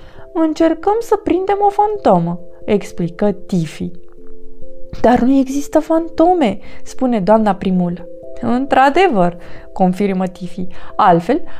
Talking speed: 95 wpm